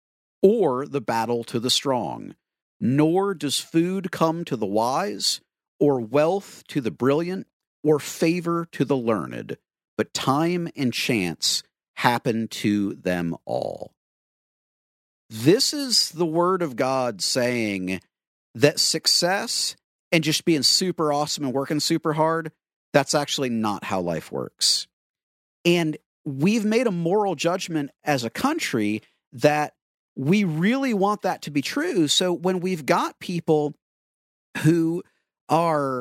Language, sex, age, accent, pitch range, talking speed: English, male, 50-69, American, 125-170 Hz, 130 wpm